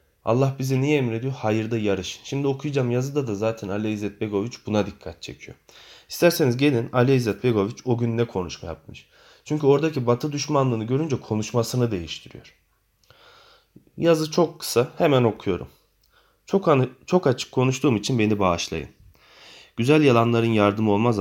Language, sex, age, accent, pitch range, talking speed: Turkish, male, 30-49, native, 105-130 Hz, 140 wpm